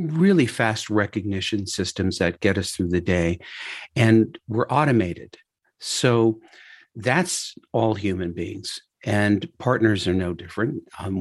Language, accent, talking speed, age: English, American, 130 wpm, 50-69